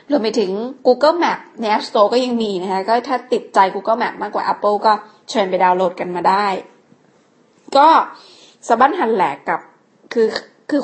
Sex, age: female, 20-39